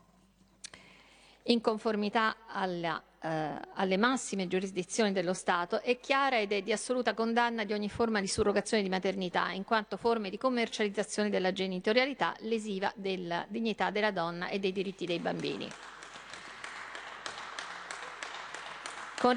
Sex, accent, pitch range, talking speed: female, native, 195-235 Hz, 125 wpm